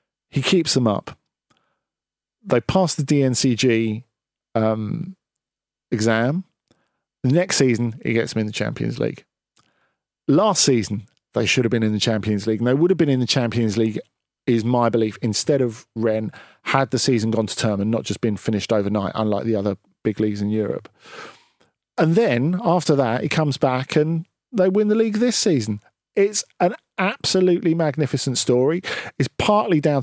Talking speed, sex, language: 170 wpm, male, English